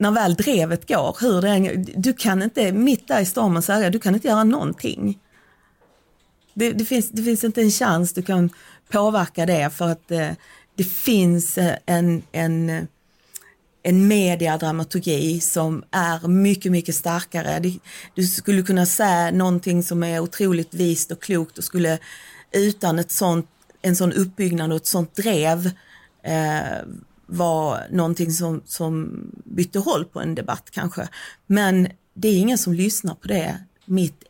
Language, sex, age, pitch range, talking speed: Swedish, female, 40-59, 165-200 Hz, 155 wpm